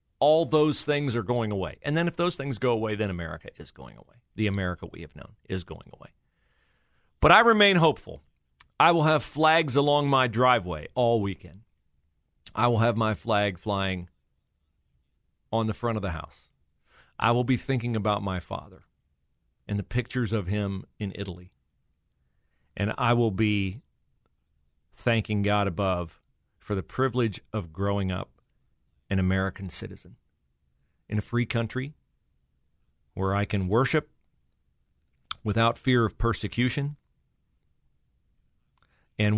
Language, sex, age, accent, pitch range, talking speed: English, male, 40-59, American, 75-115 Hz, 145 wpm